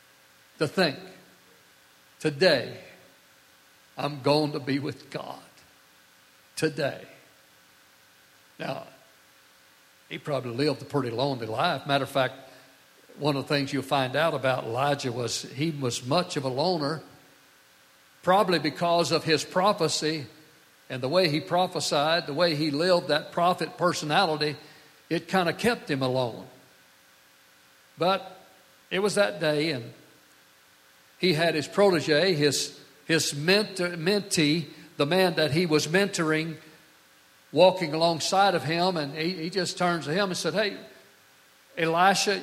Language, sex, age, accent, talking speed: English, male, 60-79, American, 135 wpm